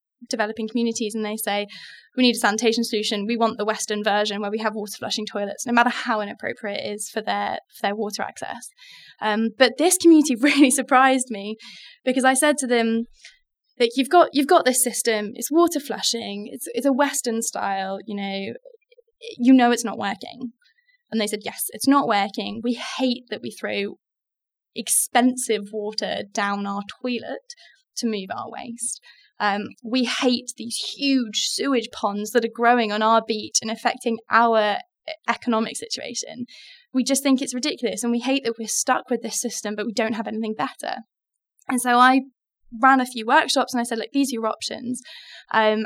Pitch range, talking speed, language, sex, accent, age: 215-260 Hz, 185 wpm, English, female, British, 10-29